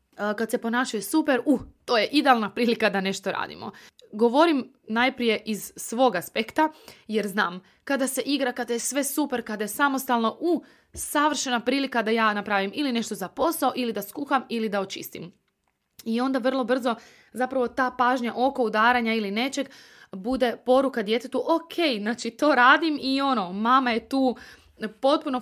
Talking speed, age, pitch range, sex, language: 170 wpm, 20-39, 205-260 Hz, female, Croatian